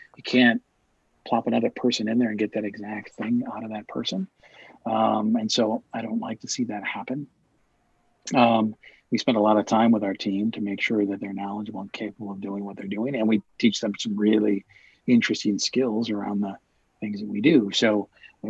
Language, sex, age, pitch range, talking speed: English, male, 40-59, 105-125 Hz, 210 wpm